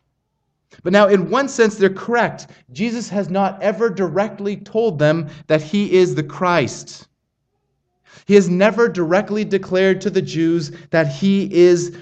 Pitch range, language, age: 160-195 Hz, English, 30-49